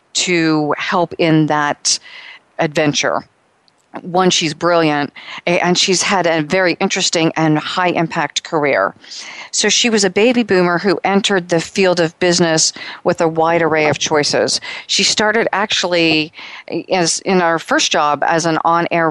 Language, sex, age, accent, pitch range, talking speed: English, female, 40-59, American, 155-180 Hz, 145 wpm